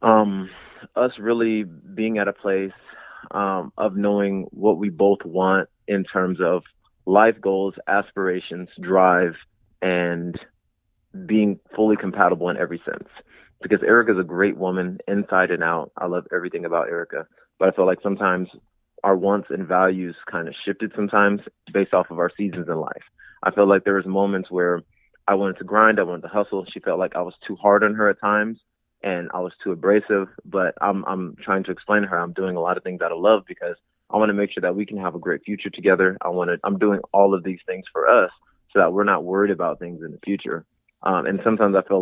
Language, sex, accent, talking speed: English, male, American, 215 wpm